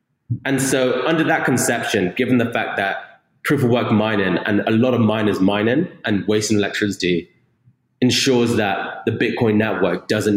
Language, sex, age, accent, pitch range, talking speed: English, male, 20-39, British, 105-125 Hz, 160 wpm